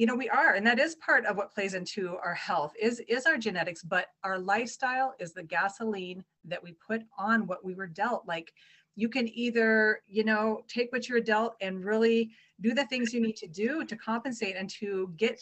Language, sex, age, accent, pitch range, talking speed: English, female, 30-49, American, 180-225 Hz, 215 wpm